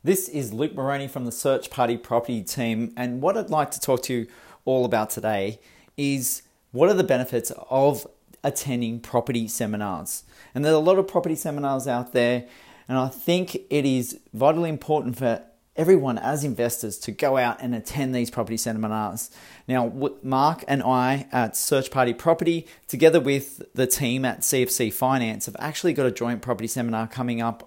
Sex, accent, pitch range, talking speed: male, Australian, 120-150 Hz, 180 wpm